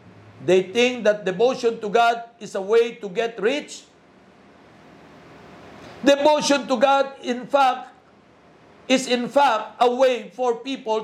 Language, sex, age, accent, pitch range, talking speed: Filipino, male, 50-69, native, 235-265 Hz, 130 wpm